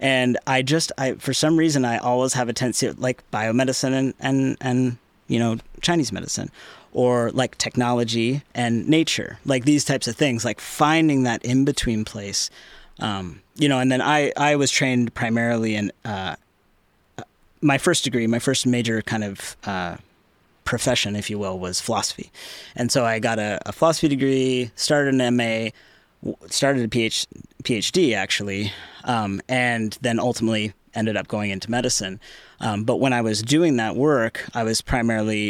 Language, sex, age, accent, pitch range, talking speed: English, male, 30-49, American, 105-130 Hz, 170 wpm